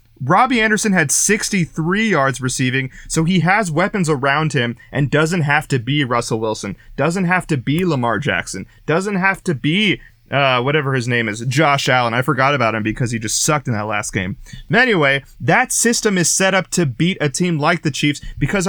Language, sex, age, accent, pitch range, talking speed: English, male, 30-49, American, 135-190 Hz, 200 wpm